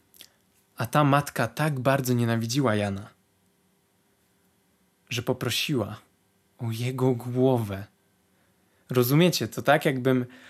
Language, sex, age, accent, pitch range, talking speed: Polish, male, 20-39, native, 125-175 Hz, 90 wpm